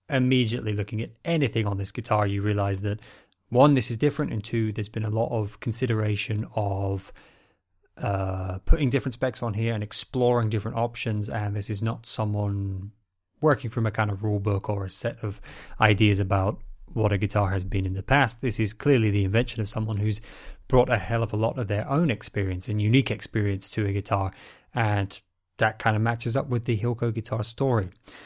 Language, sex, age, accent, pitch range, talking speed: English, male, 20-39, British, 100-120 Hz, 200 wpm